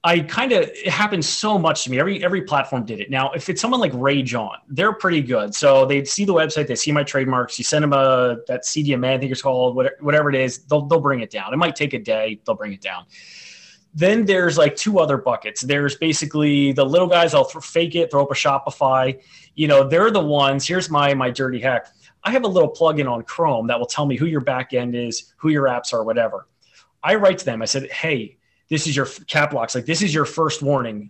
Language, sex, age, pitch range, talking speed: English, male, 30-49, 130-165 Hz, 245 wpm